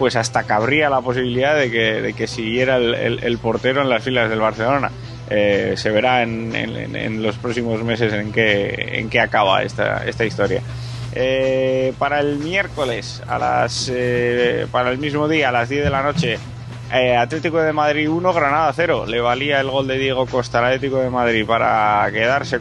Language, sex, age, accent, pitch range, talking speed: Spanish, male, 20-39, Spanish, 120-140 Hz, 190 wpm